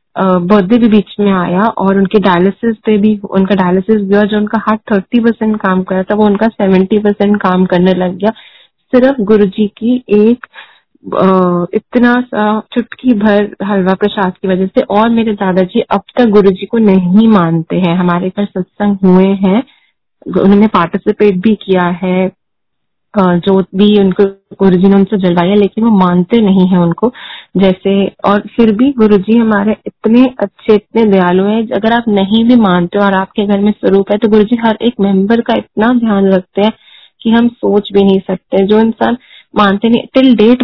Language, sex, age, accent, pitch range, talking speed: Hindi, female, 20-39, native, 190-220 Hz, 175 wpm